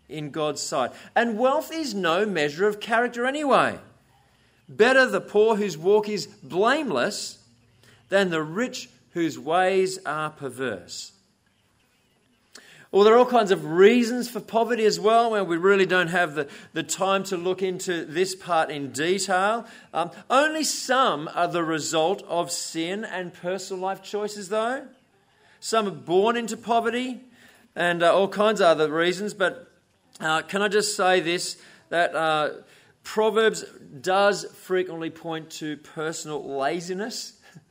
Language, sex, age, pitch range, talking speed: English, male, 40-59, 150-210 Hz, 145 wpm